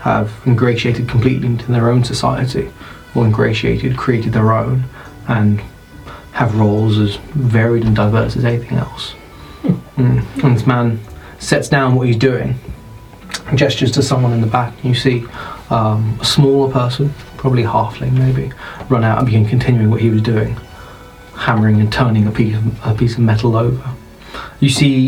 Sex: male